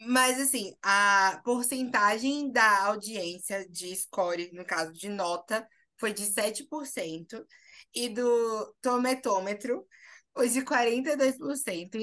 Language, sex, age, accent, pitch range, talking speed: Portuguese, female, 20-39, Brazilian, 195-260 Hz, 105 wpm